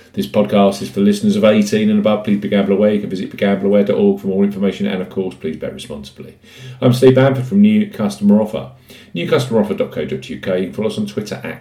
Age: 50-69